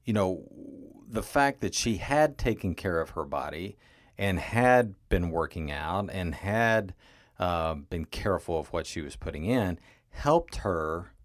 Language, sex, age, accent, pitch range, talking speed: English, male, 40-59, American, 90-120 Hz, 160 wpm